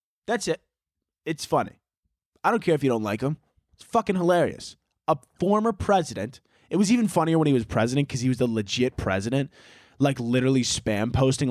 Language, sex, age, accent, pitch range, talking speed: English, male, 20-39, American, 115-180 Hz, 190 wpm